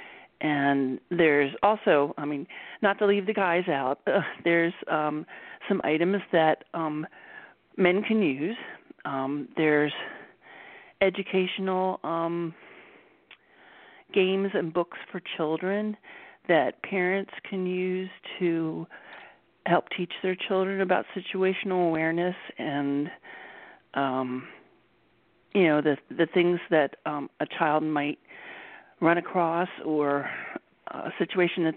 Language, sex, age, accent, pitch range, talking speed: English, male, 40-59, American, 160-215 Hz, 115 wpm